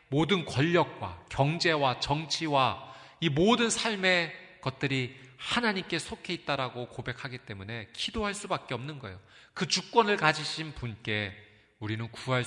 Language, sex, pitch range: Korean, male, 105-135 Hz